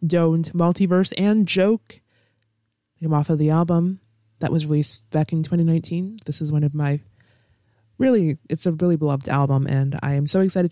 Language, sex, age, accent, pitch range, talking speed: English, female, 20-39, American, 140-185 Hz, 175 wpm